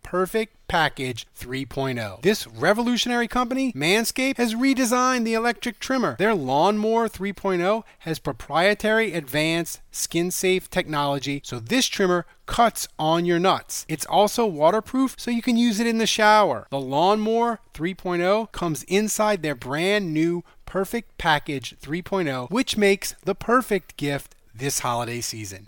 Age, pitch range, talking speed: 30-49, 140-215 Hz, 135 wpm